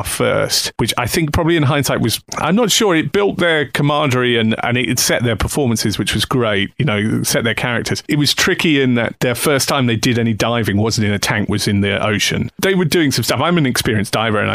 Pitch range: 110-145 Hz